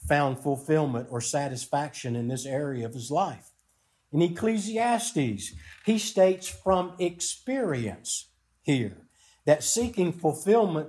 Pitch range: 135-185 Hz